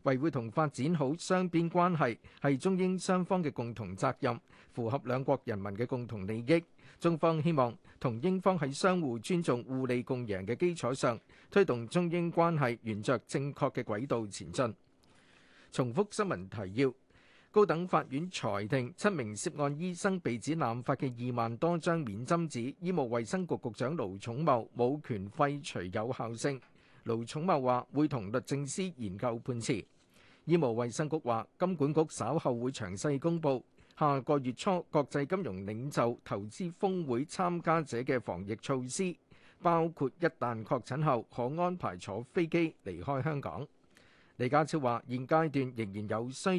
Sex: male